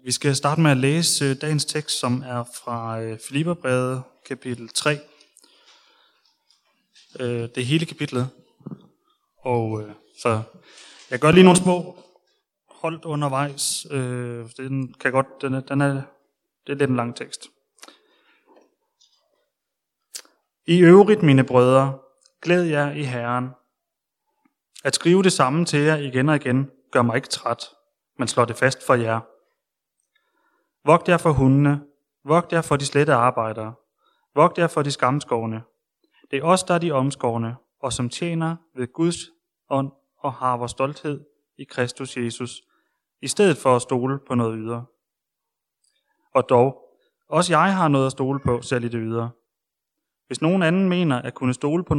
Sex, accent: male, native